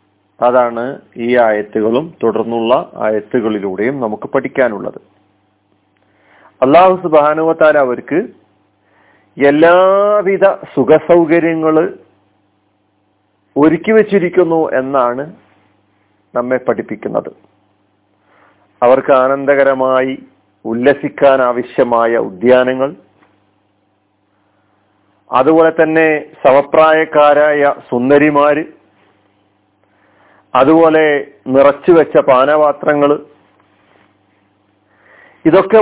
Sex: male